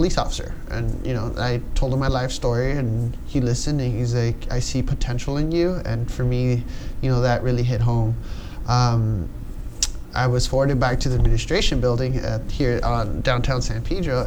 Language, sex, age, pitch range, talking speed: English, male, 20-39, 115-130 Hz, 190 wpm